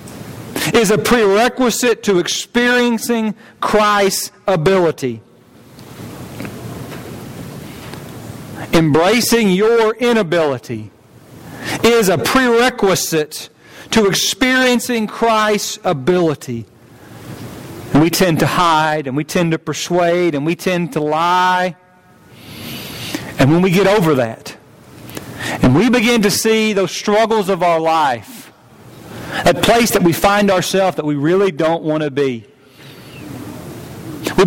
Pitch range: 150-210 Hz